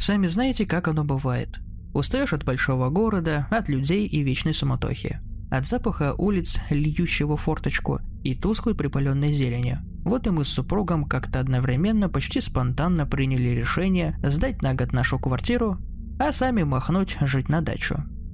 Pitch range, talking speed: 130-175 Hz, 145 wpm